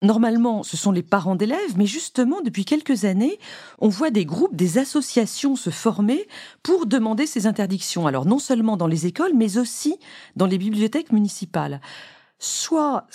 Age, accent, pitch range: 40-59, French, 180-250 Hz